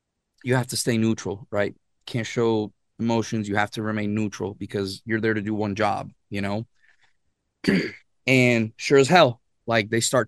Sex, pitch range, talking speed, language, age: male, 100-120 Hz, 175 wpm, English, 20-39